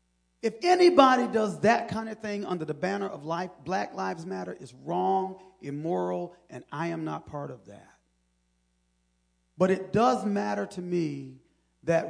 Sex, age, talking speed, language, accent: male, 40-59, 160 wpm, English, American